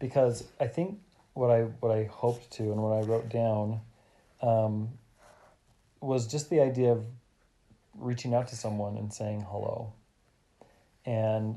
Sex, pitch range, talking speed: male, 110-125 Hz, 145 wpm